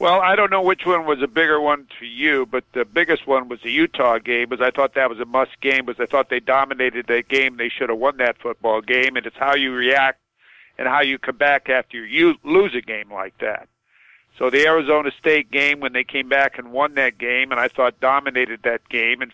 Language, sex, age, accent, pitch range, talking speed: English, male, 50-69, American, 125-145 Hz, 245 wpm